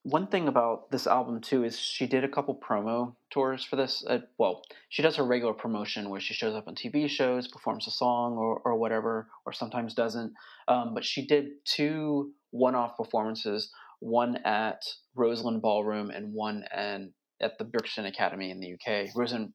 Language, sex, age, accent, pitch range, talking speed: English, male, 20-39, American, 110-125 Hz, 185 wpm